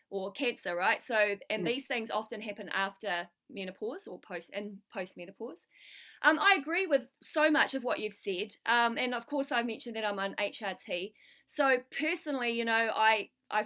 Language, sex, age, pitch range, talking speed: English, female, 20-39, 200-265 Hz, 185 wpm